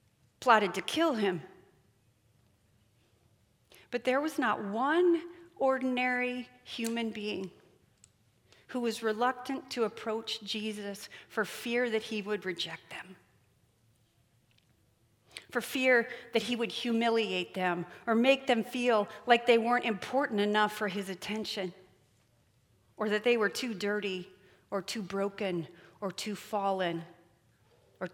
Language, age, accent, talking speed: English, 40-59, American, 120 wpm